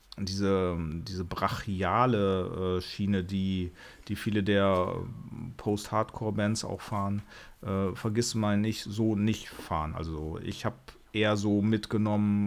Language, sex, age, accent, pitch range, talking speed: German, male, 40-59, German, 95-115 Hz, 115 wpm